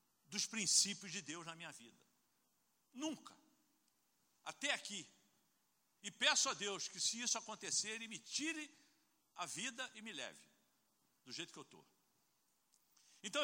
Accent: Brazilian